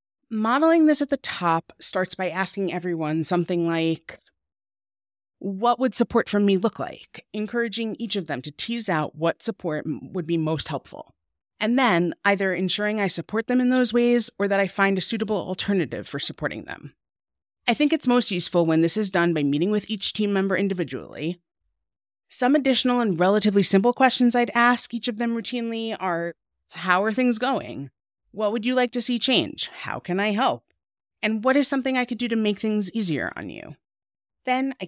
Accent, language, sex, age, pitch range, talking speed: American, English, female, 30-49, 170-230 Hz, 190 wpm